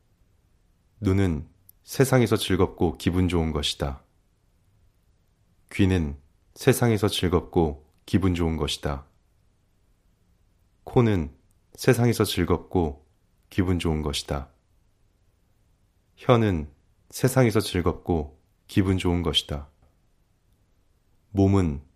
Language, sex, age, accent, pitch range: Korean, male, 30-49, native, 85-100 Hz